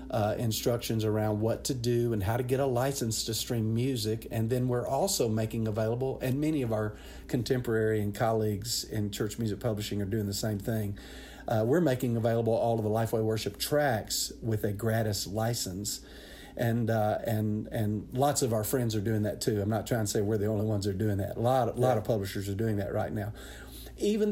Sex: male